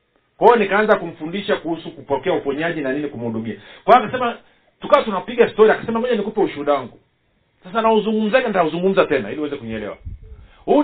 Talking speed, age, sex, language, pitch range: 160 wpm, 50-69, male, Swahili, 150-215 Hz